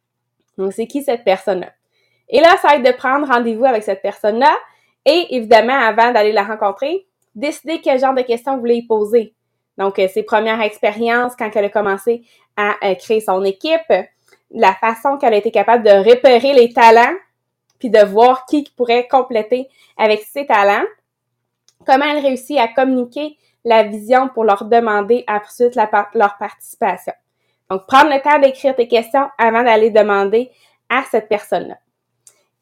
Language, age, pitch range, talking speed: English, 20-39, 210-265 Hz, 165 wpm